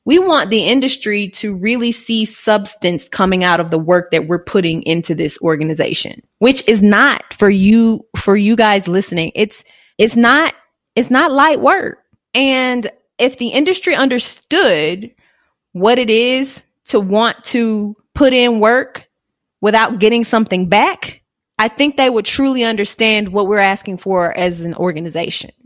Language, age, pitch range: English, 20-39, 195-245 Hz